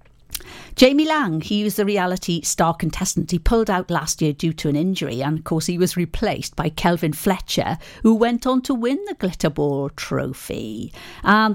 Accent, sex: British, female